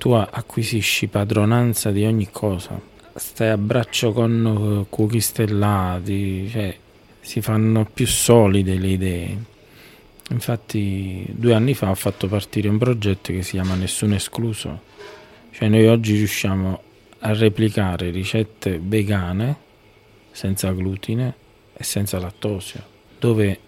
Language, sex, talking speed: Italian, male, 120 wpm